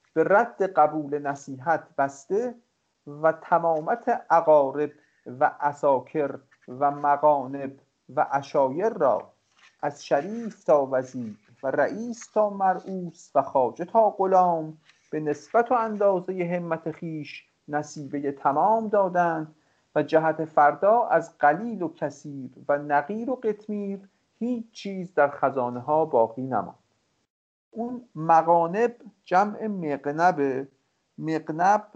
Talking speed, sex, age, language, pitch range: 115 wpm, male, 50-69, English, 140-190 Hz